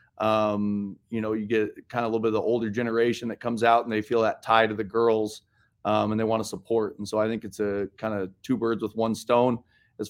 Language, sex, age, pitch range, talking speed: English, male, 30-49, 105-120 Hz, 265 wpm